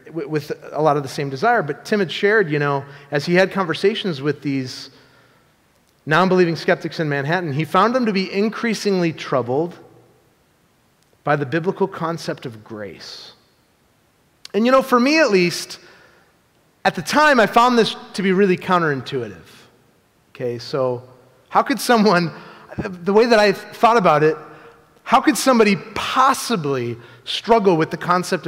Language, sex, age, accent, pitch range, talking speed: English, male, 30-49, American, 140-195 Hz, 155 wpm